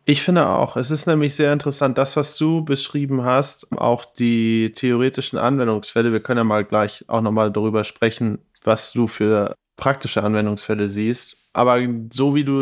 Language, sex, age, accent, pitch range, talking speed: German, male, 20-39, German, 115-140 Hz, 170 wpm